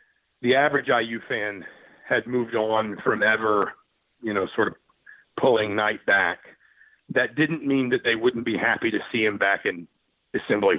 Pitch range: 115-145 Hz